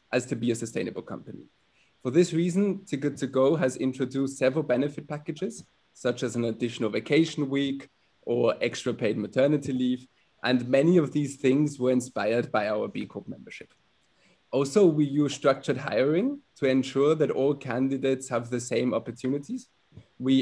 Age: 20-39